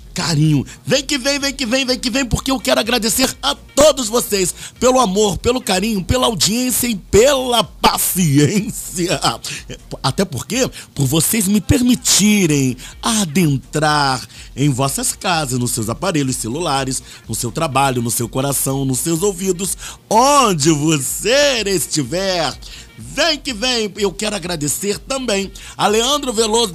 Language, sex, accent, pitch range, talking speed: Portuguese, male, Brazilian, 140-225 Hz, 140 wpm